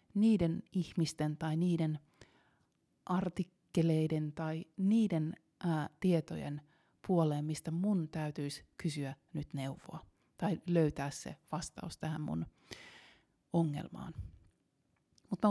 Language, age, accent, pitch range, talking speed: Finnish, 30-49, native, 150-170 Hz, 95 wpm